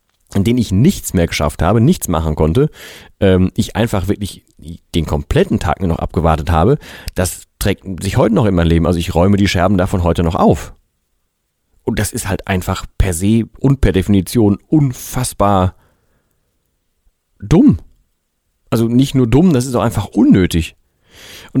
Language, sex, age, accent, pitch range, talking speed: German, male, 40-59, German, 85-110 Hz, 165 wpm